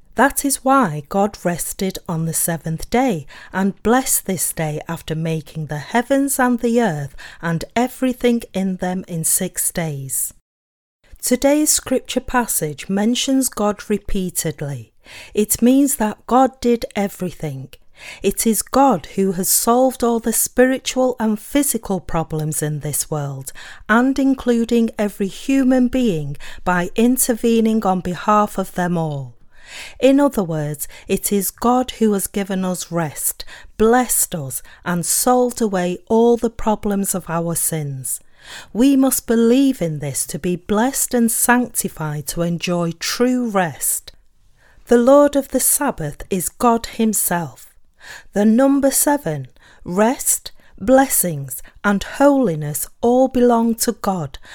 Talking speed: 135 wpm